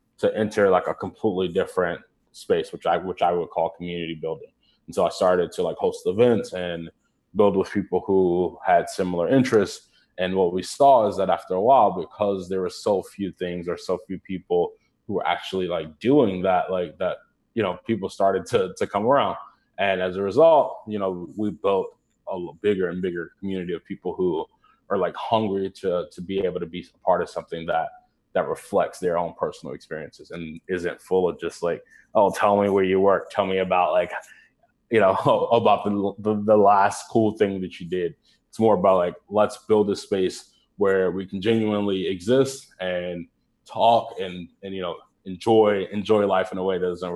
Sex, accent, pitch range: male, American, 95-135 Hz